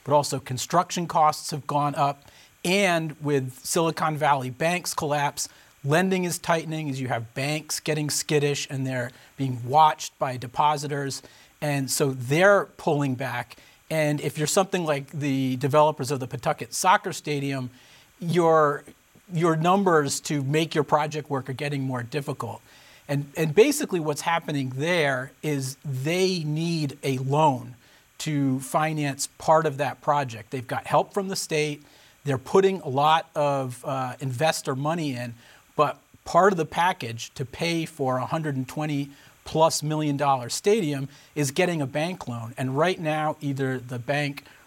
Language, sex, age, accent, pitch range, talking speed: English, male, 40-59, American, 135-160 Hz, 155 wpm